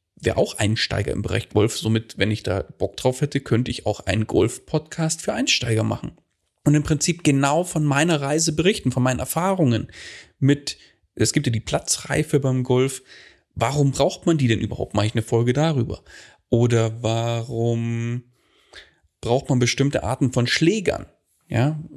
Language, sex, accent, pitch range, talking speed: German, male, German, 115-155 Hz, 165 wpm